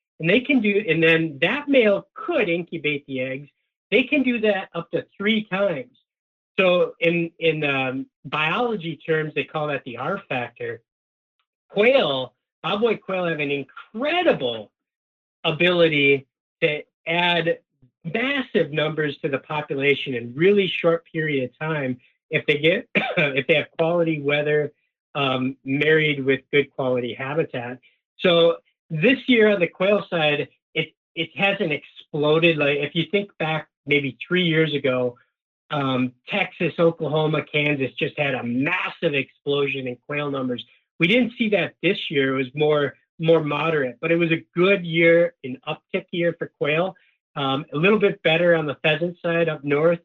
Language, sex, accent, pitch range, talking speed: English, male, American, 140-180 Hz, 155 wpm